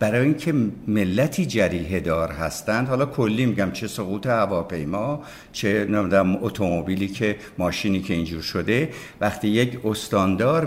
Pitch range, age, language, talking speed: 105-145 Hz, 60-79, Persian, 130 wpm